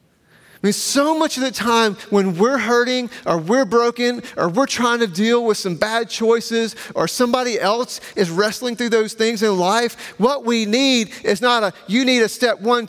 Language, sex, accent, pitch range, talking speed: English, male, American, 195-245 Hz, 195 wpm